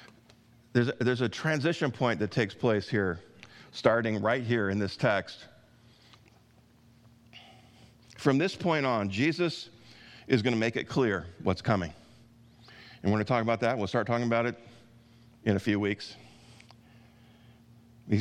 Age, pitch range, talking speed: 50-69, 110-120 Hz, 150 wpm